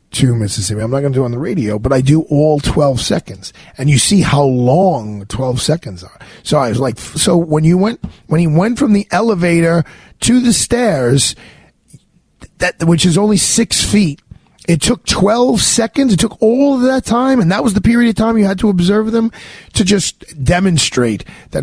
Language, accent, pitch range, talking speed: English, American, 120-180 Hz, 205 wpm